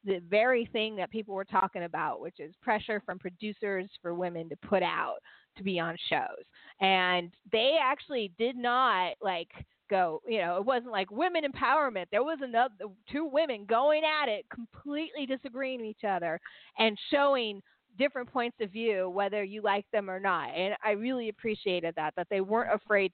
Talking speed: 180 wpm